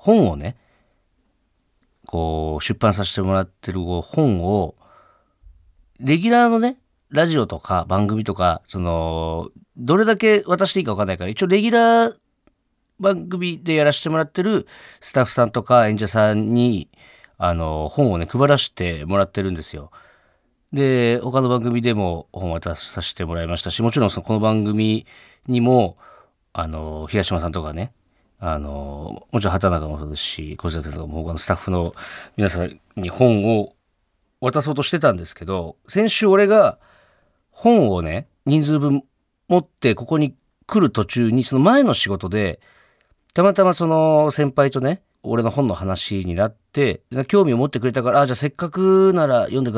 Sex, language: male, Japanese